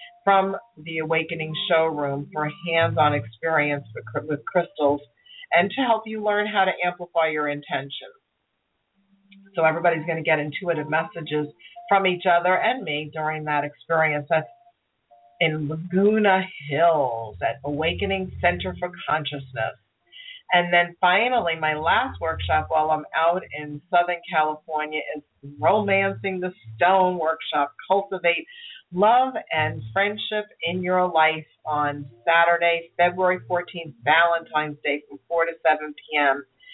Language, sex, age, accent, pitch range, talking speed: English, female, 40-59, American, 150-190 Hz, 130 wpm